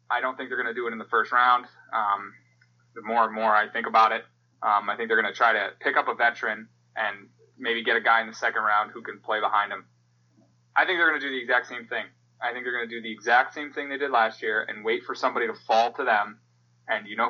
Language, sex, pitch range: English, male, 115-130 Hz